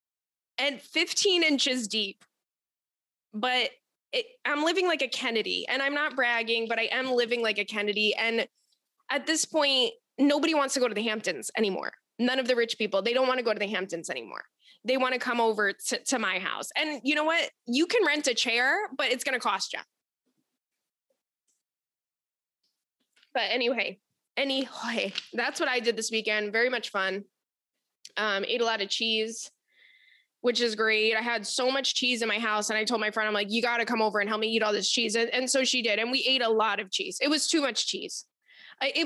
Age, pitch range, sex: 20-39, 220-295 Hz, female